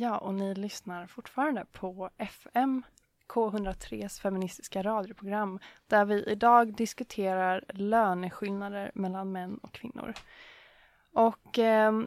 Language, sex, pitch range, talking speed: English, female, 190-225 Hz, 100 wpm